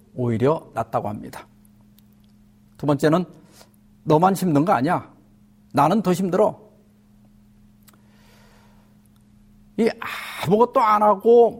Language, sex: Korean, male